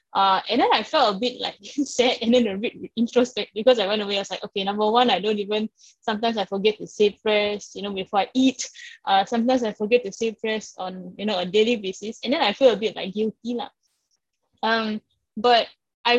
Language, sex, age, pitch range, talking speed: English, female, 10-29, 195-235 Hz, 230 wpm